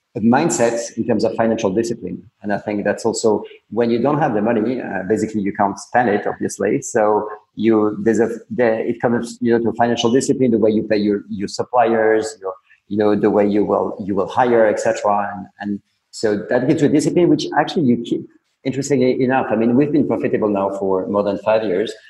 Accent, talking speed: French, 215 wpm